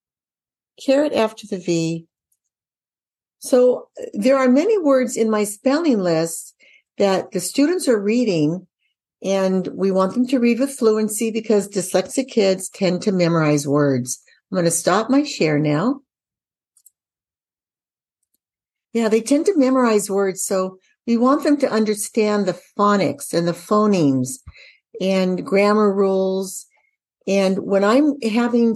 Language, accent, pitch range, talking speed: English, American, 180-245 Hz, 135 wpm